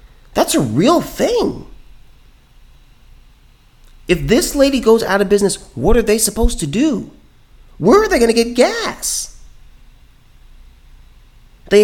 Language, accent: English, American